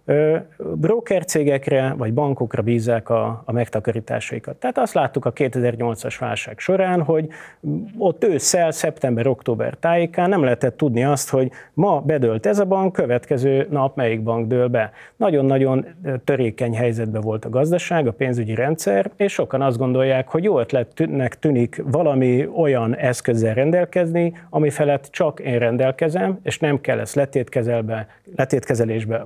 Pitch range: 120-150 Hz